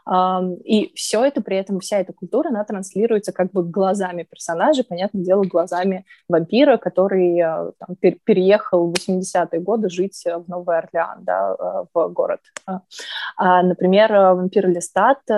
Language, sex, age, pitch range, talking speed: Russian, female, 20-39, 175-200 Hz, 135 wpm